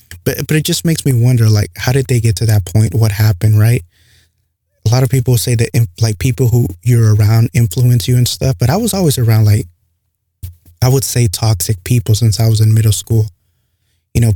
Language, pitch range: English, 100-115 Hz